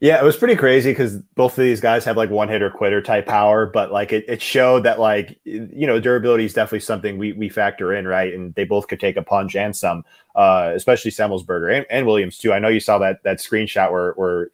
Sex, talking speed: male, 250 wpm